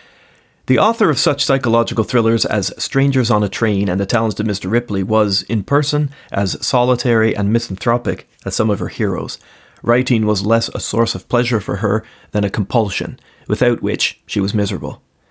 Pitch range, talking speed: 105-120 Hz, 180 wpm